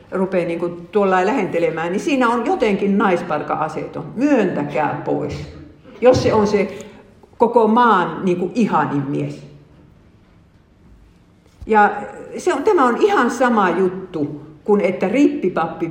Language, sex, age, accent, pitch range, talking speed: Finnish, female, 50-69, native, 160-220 Hz, 115 wpm